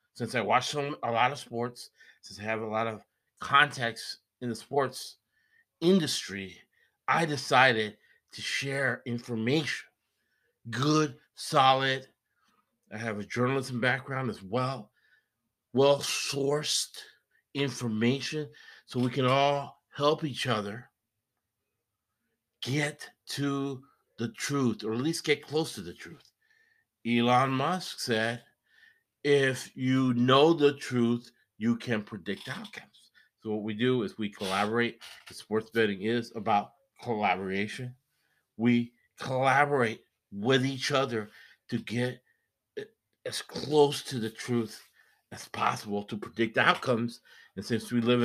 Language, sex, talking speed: English, male, 125 wpm